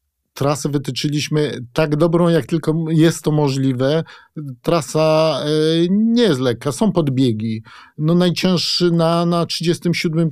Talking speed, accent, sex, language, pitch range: 110 wpm, native, male, Polish, 150-175 Hz